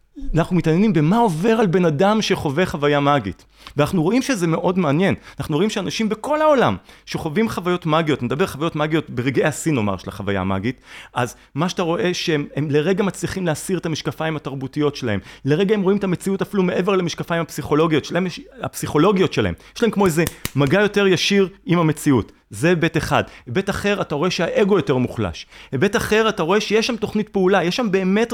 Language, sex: Hebrew, male